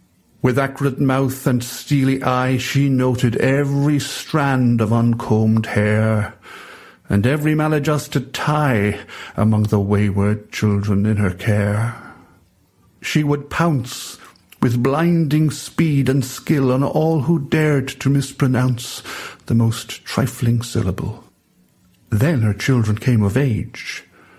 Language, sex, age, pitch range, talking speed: English, male, 60-79, 105-135 Hz, 120 wpm